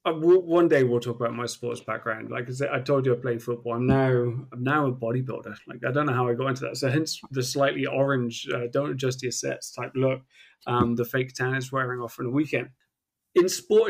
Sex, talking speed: male, 240 wpm